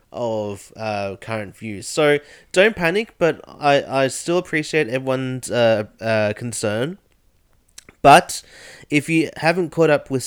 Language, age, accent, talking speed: English, 20-39, Australian, 135 wpm